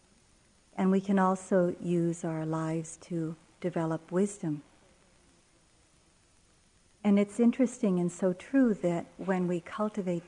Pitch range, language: 170-190 Hz, English